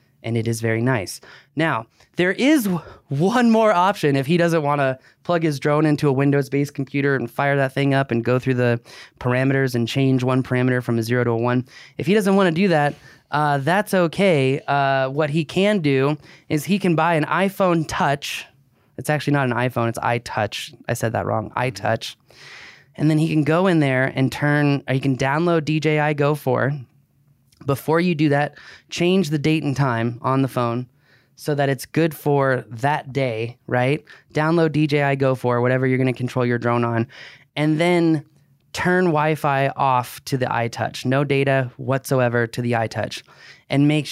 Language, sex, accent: English, male, American